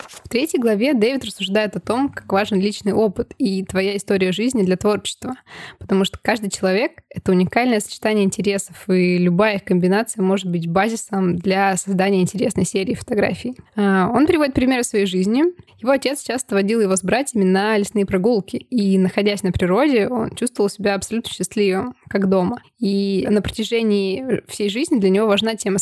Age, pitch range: 20-39, 190-225 Hz